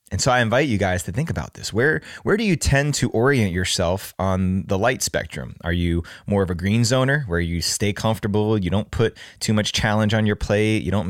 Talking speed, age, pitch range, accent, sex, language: 240 wpm, 20-39, 95-120 Hz, American, male, English